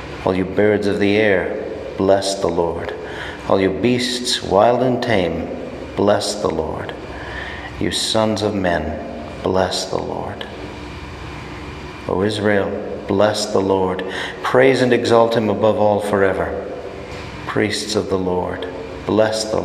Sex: male